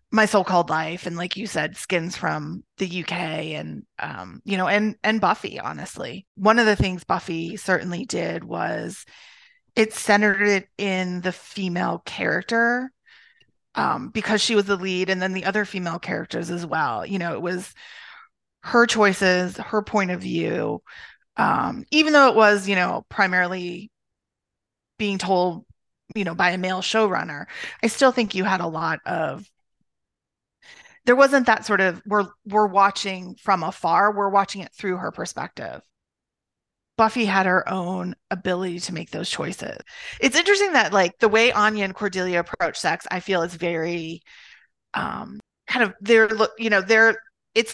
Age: 30-49